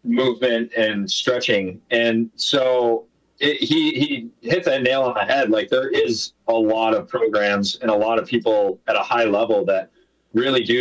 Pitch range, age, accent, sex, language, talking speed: 105-140 Hz, 30-49, American, male, English, 180 wpm